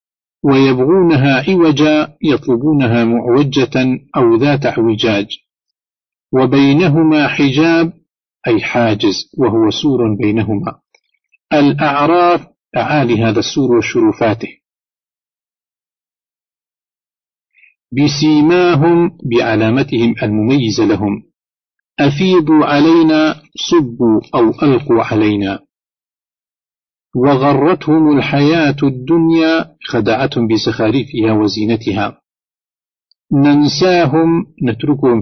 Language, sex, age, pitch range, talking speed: Arabic, male, 50-69, 115-160 Hz, 65 wpm